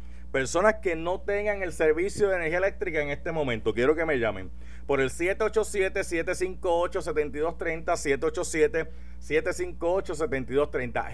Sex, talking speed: male, 110 wpm